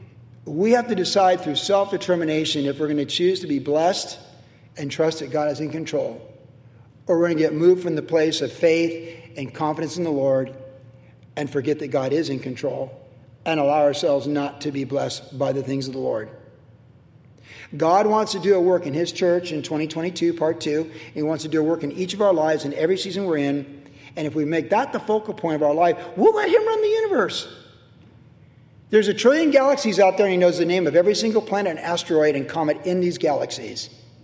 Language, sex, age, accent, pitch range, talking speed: English, male, 40-59, American, 140-185 Hz, 220 wpm